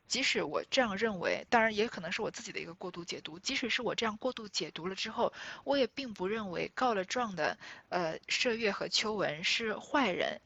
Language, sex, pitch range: Chinese, female, 200-255 Hz